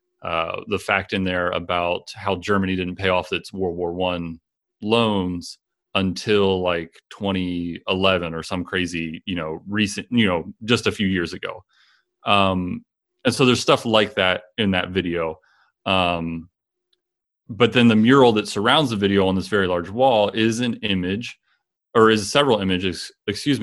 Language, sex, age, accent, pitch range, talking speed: English, male, 30-49, American, 95-110 Hz, 165 wpm